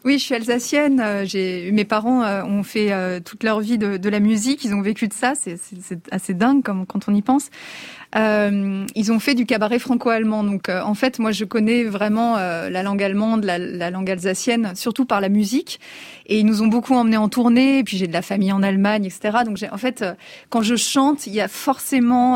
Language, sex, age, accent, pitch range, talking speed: French, female, 20-39, French, 200-255 Hz, 240 wpm